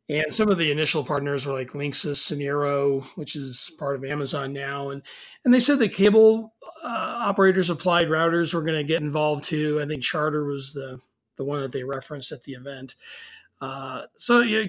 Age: 30-49